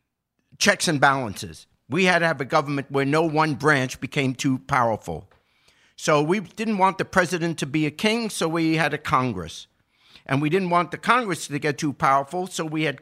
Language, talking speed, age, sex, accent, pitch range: English, 205 wpm, 50-69, male, American, 130-180 Hz